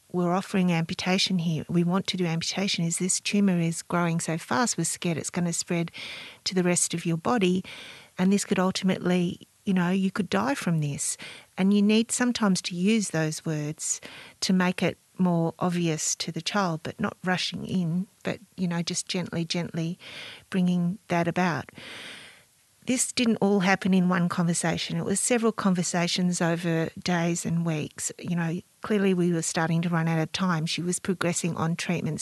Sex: female